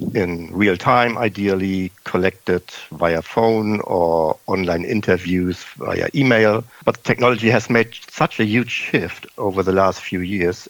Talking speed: 140 wpm